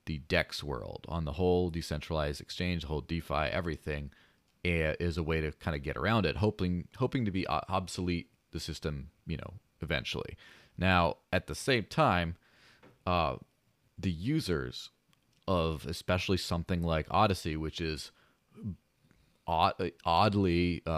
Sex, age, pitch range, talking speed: male, 30-49, 80-100 Hz, 135 wpm